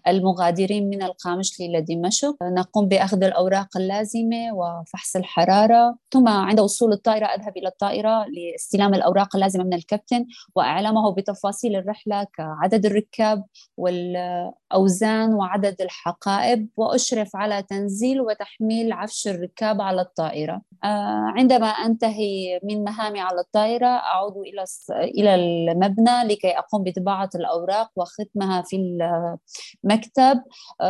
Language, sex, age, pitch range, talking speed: Arabic, female, 20-39, 185-220 Hz, 110 wpm